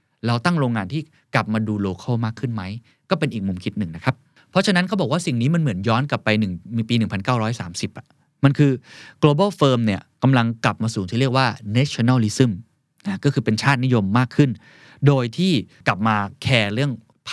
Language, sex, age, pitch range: Thai, male, 20-39, 110-145 Hz